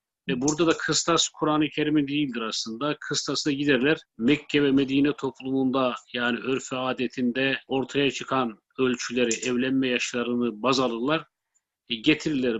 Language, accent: Turkish, native